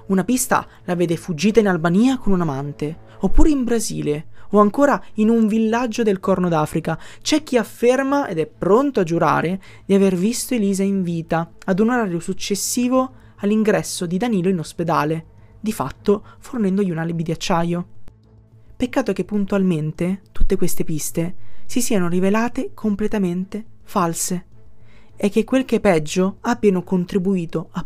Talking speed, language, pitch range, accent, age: 155 wpm, Italian, 160-215 Hz, native, 20-39